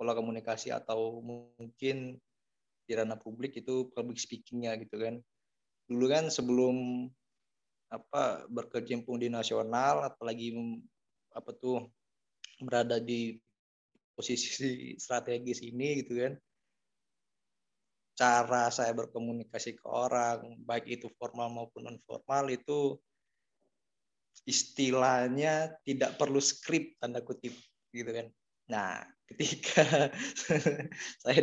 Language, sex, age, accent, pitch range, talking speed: Indonesian, male, 20-39, native, 115-135 Hz, 95 wpm